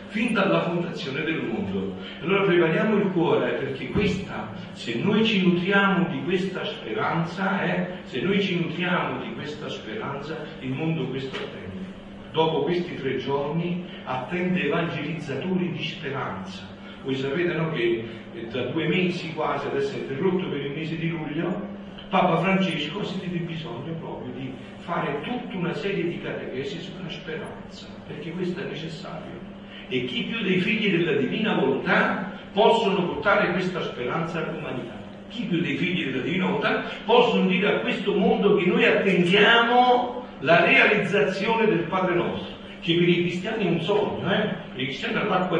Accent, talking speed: native, 155 wpm